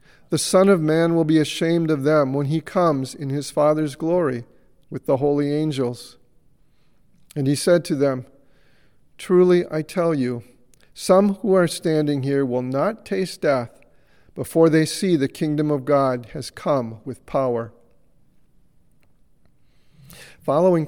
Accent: American